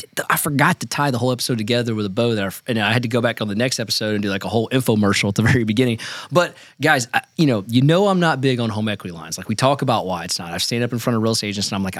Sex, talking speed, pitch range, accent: male, 325 wpm, 105-130 Hz, American